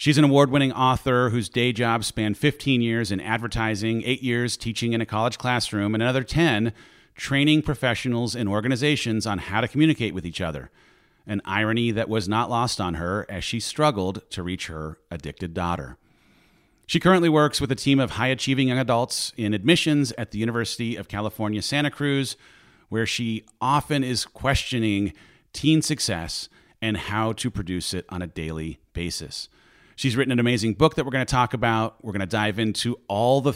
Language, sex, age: English, male, 40-59